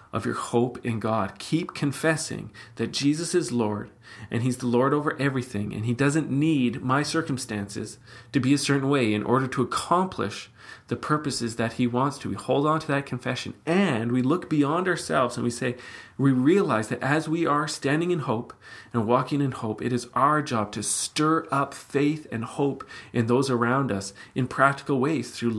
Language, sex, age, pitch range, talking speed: English, male, 40-59, 110-135 Hz, 195 wpm